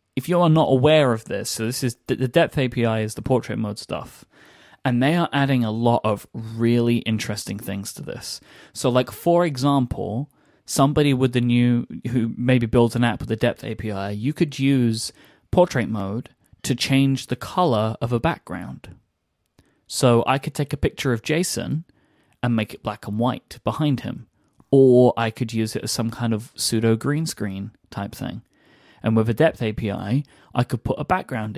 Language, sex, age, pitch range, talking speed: English, male, 20-39, 110-135 Hz, 190 wpm